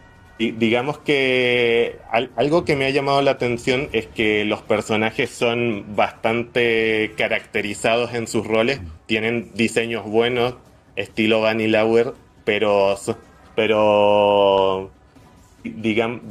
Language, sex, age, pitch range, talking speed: Spanish, male, 20-39, 100-115 Hz, 110 wpm